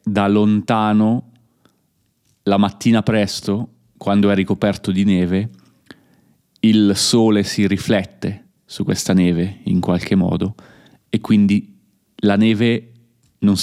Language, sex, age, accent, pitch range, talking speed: Italian, male, 30-49, native, 95-115 Hz, 110 wpm